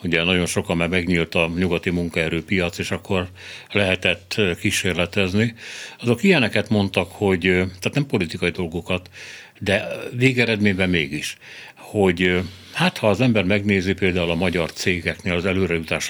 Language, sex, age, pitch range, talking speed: Hungarian, male, 60-79, 90-120 Hz, 130 wpm